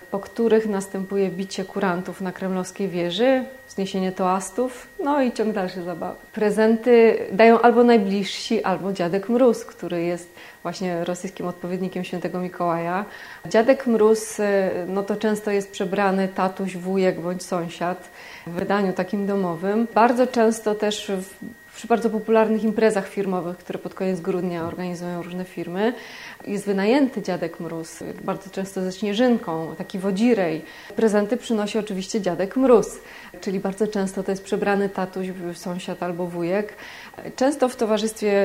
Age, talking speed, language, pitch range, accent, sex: 30-49, 135 wpm, Polish, 180-215 Hz, native, female